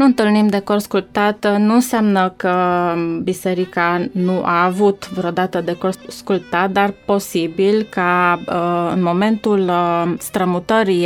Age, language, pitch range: 20-39, Romanian, 180-210 Hz